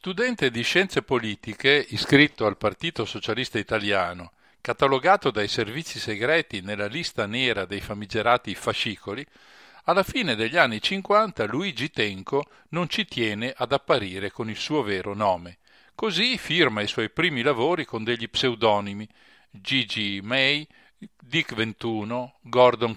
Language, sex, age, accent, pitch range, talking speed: Italian, male, 50-69, native, 110-140 Hz, 130 wpm